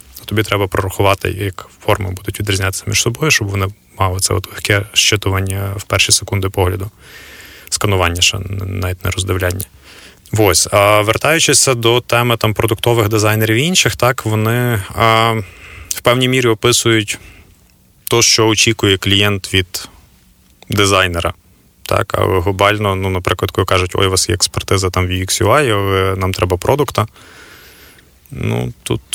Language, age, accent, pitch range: Ukrainian, 20-39, native, 95-110 Hz